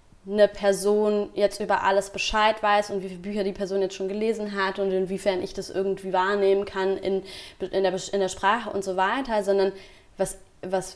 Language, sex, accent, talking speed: German, female, German, 185 wpm